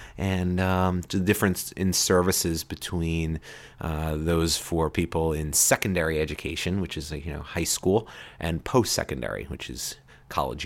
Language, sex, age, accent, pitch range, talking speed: English, male, 30-49, American, 85-125 Hz, 140 wpm